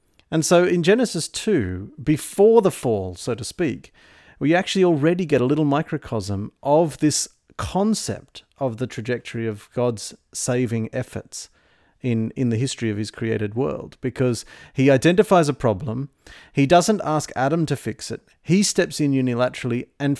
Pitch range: 115-155 Hz